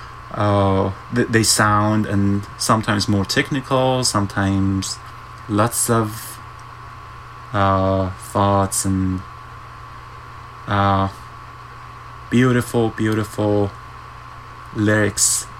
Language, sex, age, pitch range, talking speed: English, male, 20-39, 100-120 Hz, 65 wpm